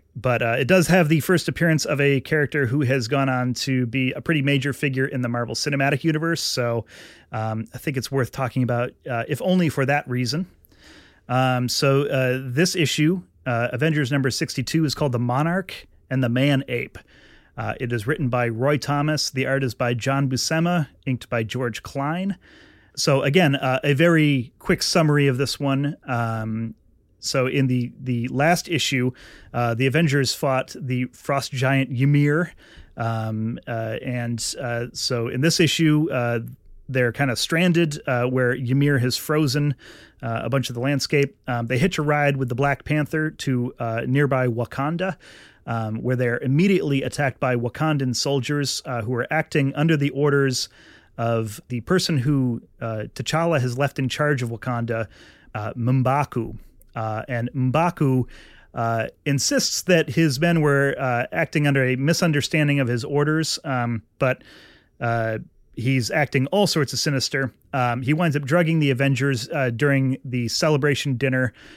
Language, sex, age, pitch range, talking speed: English, male, 30-49, 120-150 Hz, 170 wpm